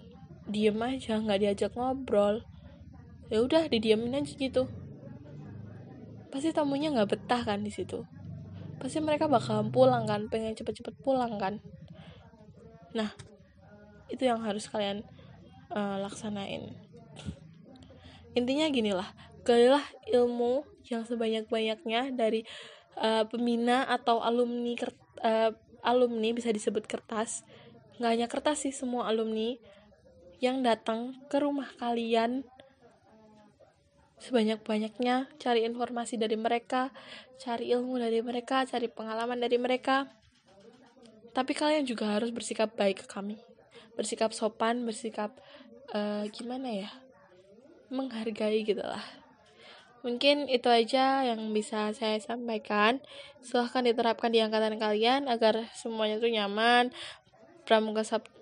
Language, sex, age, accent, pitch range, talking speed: Indonesian, female, 10-29, native, 220-250 Hz, 115 wpm